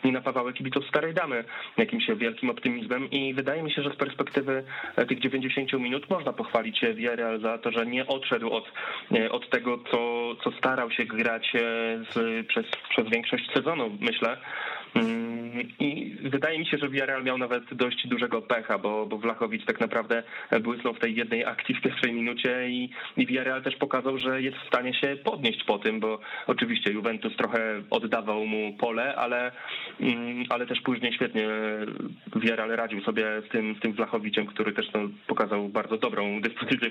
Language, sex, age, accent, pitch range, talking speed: Polish, male, 20-39, native, 115-135 Hz, 170 wpm